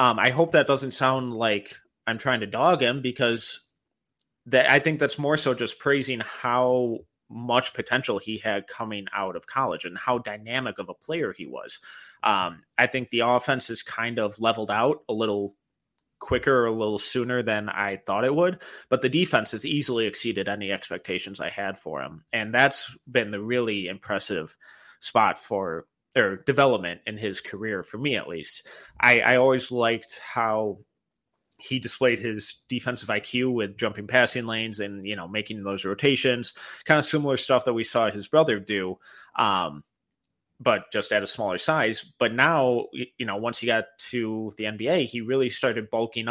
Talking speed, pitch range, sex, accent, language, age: 180 wpm, 105-130 Hz, male, American, English, 30-49